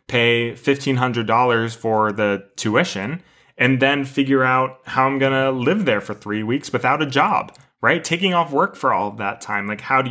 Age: 20-39